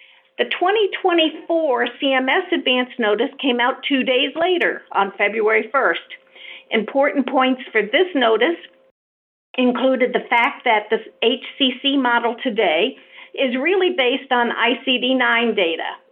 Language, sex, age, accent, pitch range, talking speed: English, female, 50-69, American, 230-310 Hz, 120 wpm